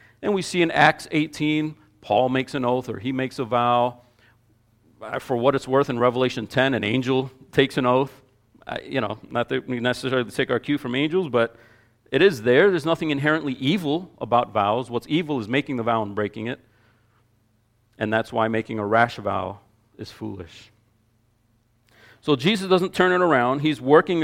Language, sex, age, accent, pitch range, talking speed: English, male, 40-59, American, 115-150 Hz, 185 wpm